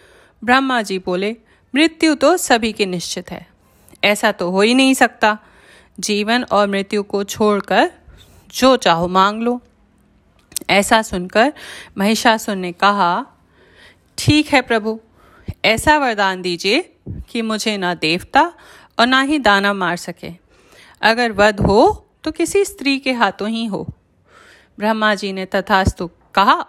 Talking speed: 135 wpm